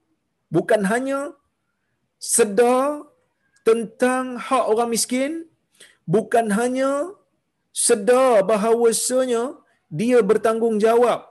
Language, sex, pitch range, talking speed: Malayalam, male, 165-255 Hz, 70 wpm